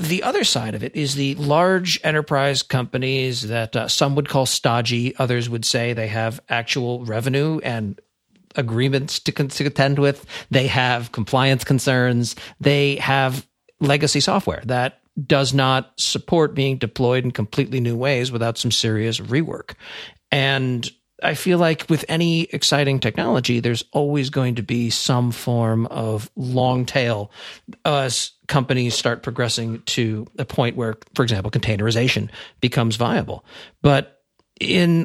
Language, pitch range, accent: English, 120-145 Hz, American